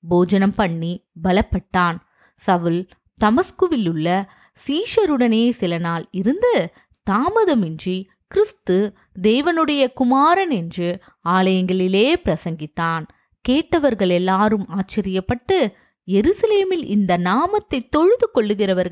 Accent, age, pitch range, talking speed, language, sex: native, 20-39, 175-265 Hz, 70 wpm, Tamil, female